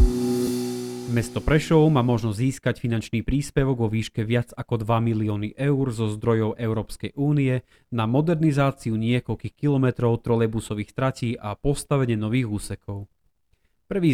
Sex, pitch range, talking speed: male, 110-135 Hz, 125 wpm